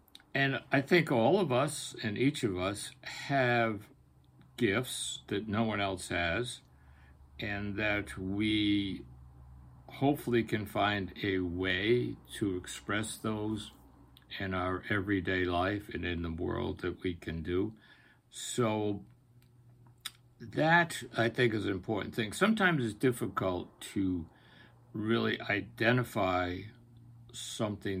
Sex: male